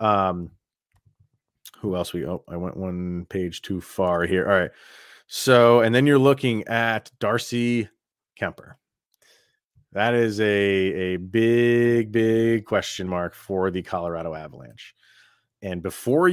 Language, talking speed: English, 130 wpm